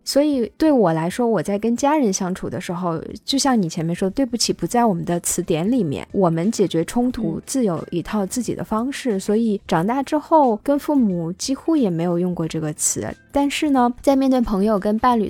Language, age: Chinese, 10-29